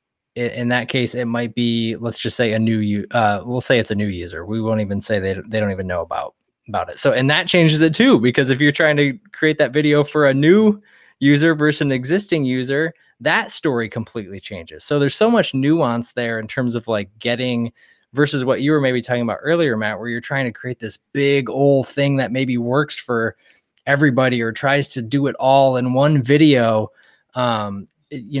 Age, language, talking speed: 20-39, English, 215 wpm